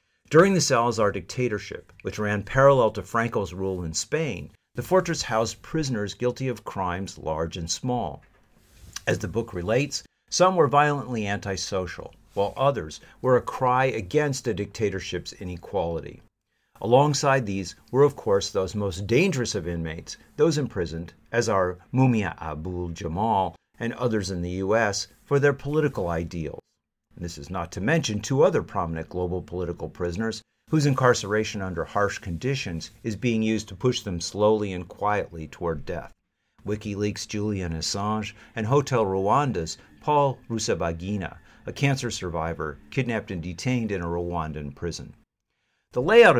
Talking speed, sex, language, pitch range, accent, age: 145 wpm, male, English, 90-125 Hz, American, 50-69